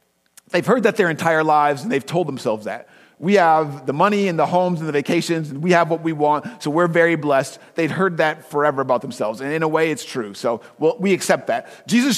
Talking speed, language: 235 wpm, English